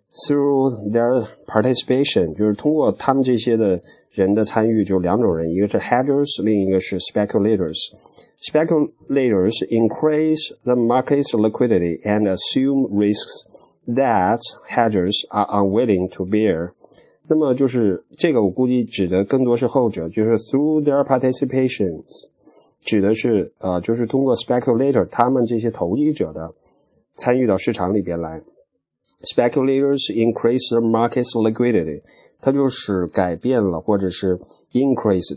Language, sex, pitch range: Chinese, male, 100-125 Hz